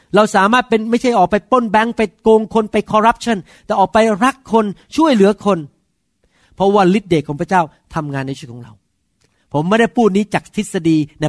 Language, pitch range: Thai, 160-230 Hz